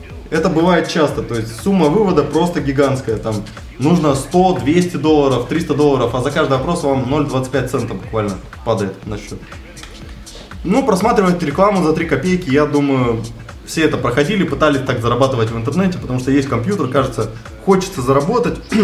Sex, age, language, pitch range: male, 20-39, Russian, 120-155 Hz